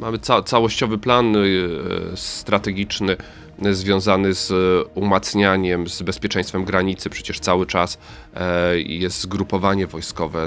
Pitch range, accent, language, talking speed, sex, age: 85-100 Hz, native, Polish, 115 wpm, male, 40-59